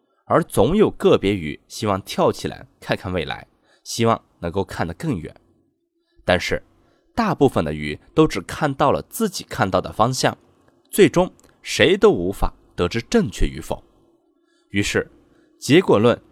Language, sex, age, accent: Chinese, male, 20-39, native